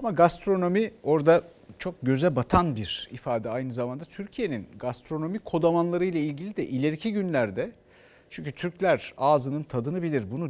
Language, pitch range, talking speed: Turkish, 130-175 Hz, 130 wpm